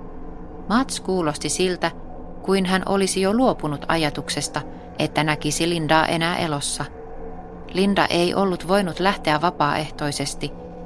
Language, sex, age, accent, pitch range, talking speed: Finnish, female, 30-49, native, 150-185 Hz, 110 wpm